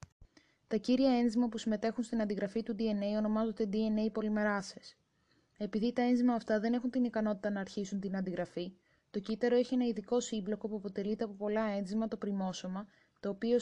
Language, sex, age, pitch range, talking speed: Greek, female, 20-39, 195-225 Hz, 170 wpm